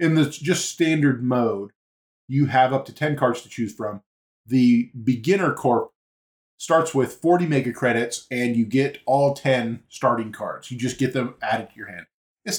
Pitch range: 110-130 Hz